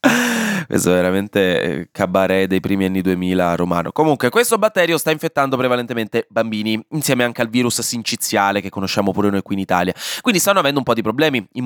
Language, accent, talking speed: Italian, native, 185 wpm